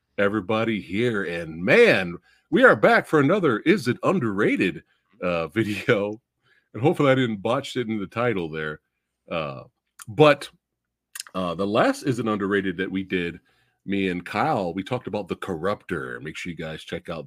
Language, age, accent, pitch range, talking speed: English, 40-59, American, 95-135 Hz, 165 wpm